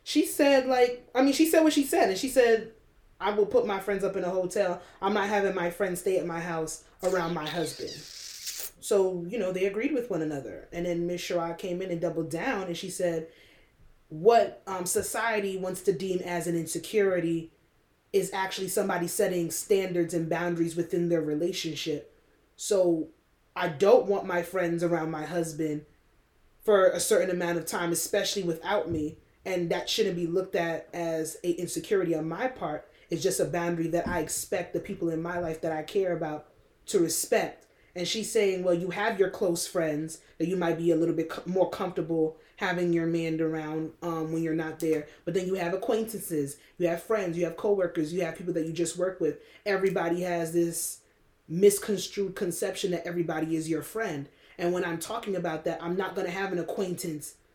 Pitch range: 165-195 Hz